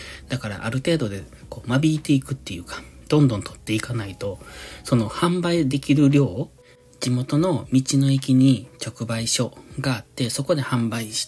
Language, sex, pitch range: Japanese, male, 110-140 Hz